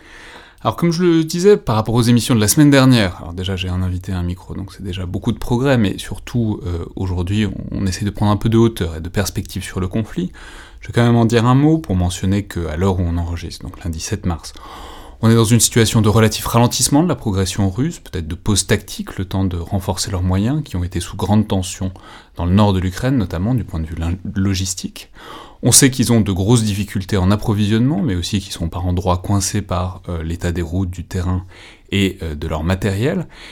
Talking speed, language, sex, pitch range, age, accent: 240 wpm, French, male, 90-110 Hz, 30-49, French